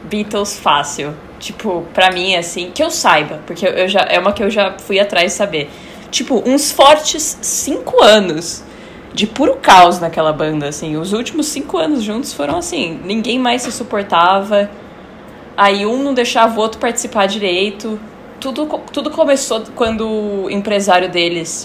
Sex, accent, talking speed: female, Brazilian, 160 wpm